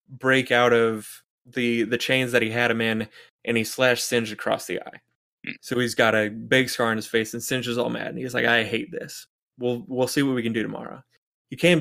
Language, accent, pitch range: English, American, 115-140 Hz